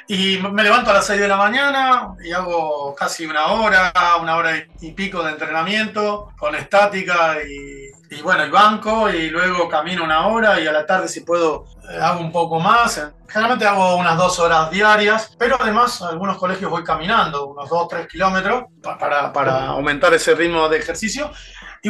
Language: Spanish